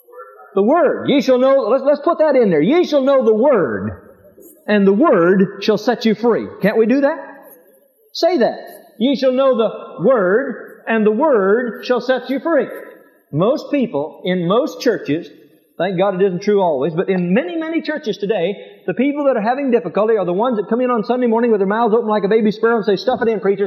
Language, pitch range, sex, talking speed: English, 210-290 Hz, male, 220 wpm